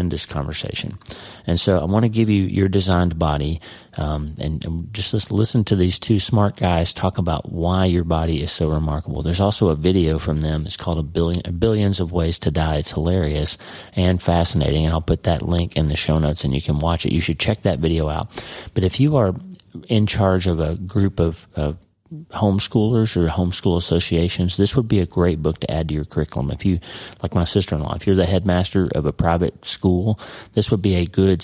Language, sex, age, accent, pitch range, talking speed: English, male, 30-49, American, 80-100 Hz, 220 wpm